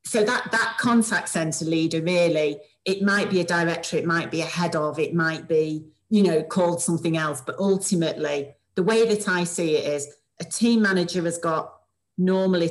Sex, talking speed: female, 195 wpm